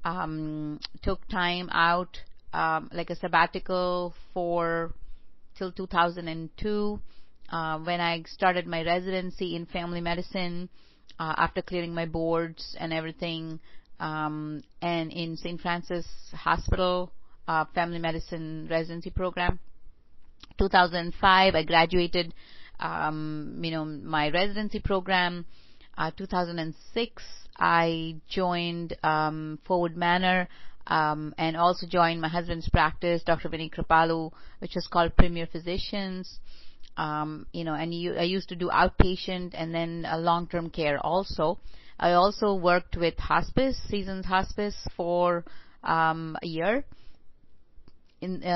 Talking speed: 120 wpm